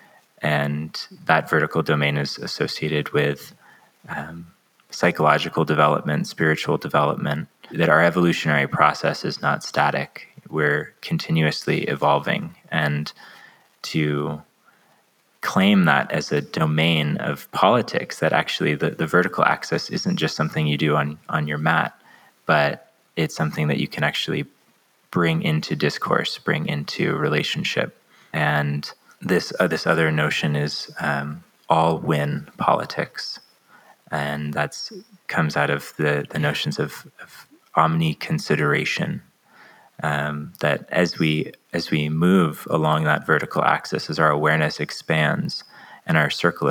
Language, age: English, 20-39